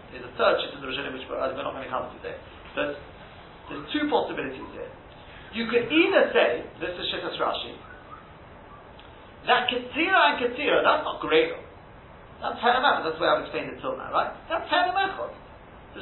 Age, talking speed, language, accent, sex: 40-59, 170 wpm, English, British, male